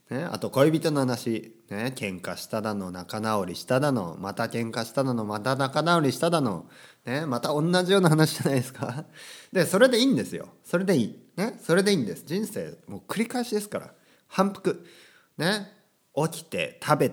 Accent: native